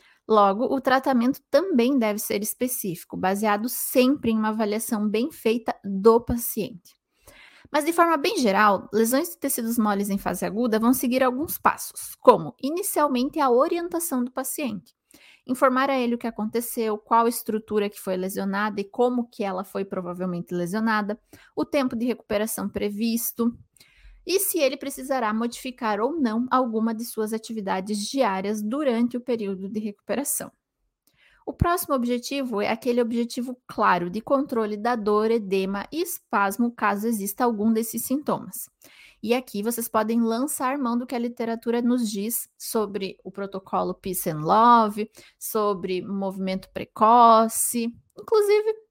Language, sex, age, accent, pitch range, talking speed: Portuguese, female, 20-39, Brazilian, 210-260 Hz, 145 wpm